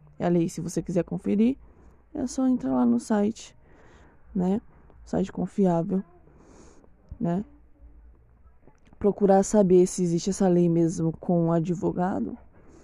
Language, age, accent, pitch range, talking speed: Portuguese, 20-39, Brazilian, 165-205 Hz, 125 wpm